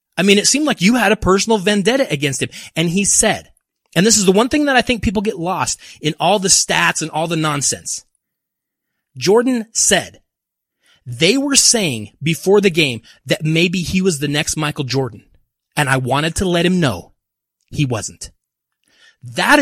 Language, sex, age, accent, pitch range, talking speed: English, male, 30-49, American, 140-195 Hz, 185 wpm